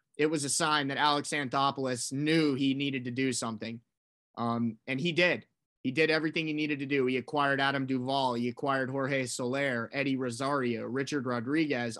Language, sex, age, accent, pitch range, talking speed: English, male, 20-39, American, 130-150 Hz, 180 wpm